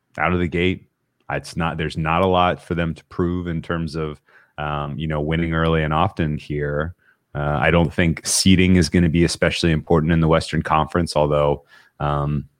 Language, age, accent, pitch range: English, 30-49, American, 75-90 Hz